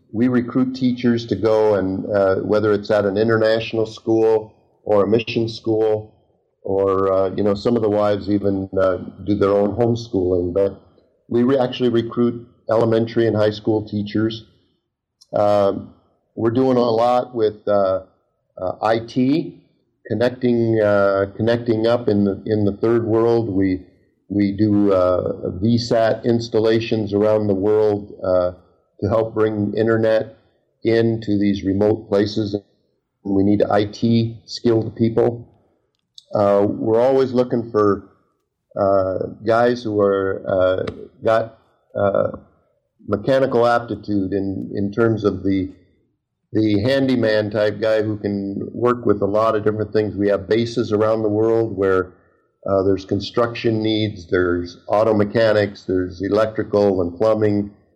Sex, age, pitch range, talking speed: male, 50-69, 100-115 Hz, 135 wpm